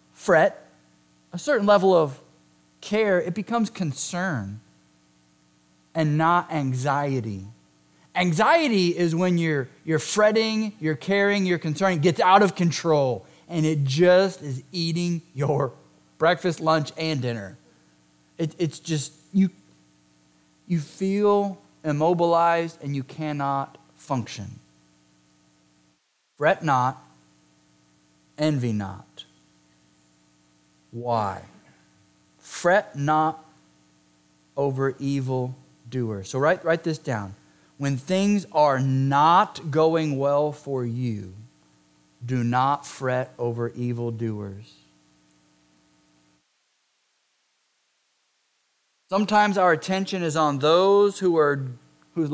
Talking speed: 95 wpm